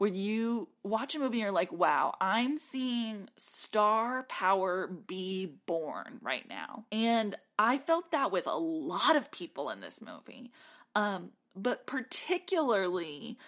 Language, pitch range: English, 195-290 Hz